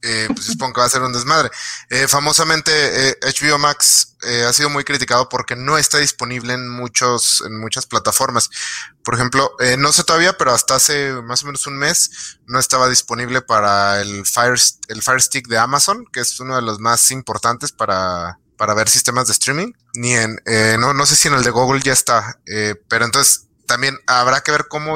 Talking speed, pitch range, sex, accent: 210 wpm, 115-150 Hz, male, Mexican